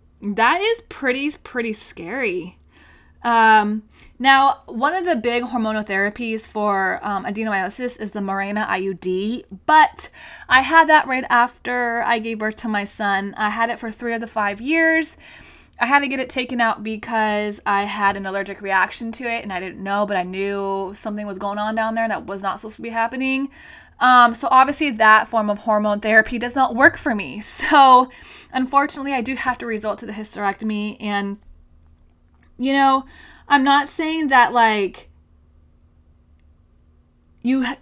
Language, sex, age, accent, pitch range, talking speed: English, female, 20-39, American, 205-255 Hz, 170 wpm